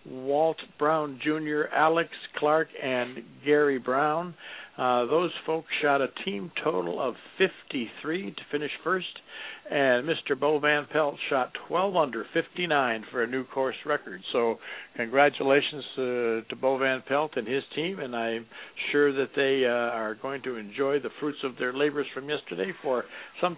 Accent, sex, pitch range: American, male, 125-150 Hz